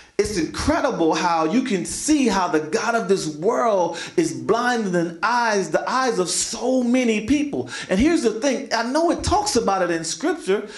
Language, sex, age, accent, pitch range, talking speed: English, male, 40-59, American, 200-275 Hz, 195 wpm